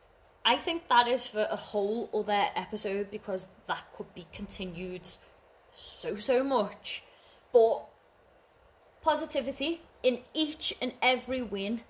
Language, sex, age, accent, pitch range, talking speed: English, female, 20-39, British, 200-255 Hz, 120 wpm